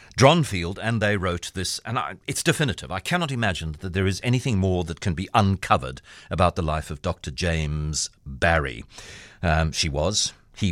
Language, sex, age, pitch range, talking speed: English, male, 50-69, 85-105 Hz, 180 wpm